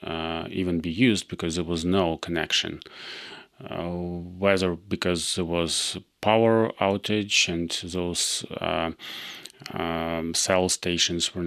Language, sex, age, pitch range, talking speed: Ukrainian, male, 30-49, 85-100 Hz, 120 wpm